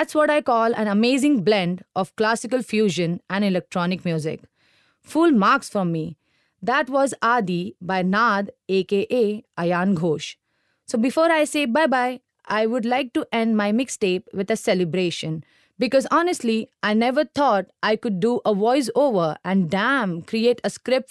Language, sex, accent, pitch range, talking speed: English, female, Indian, 190-255 Hz, 155 wpm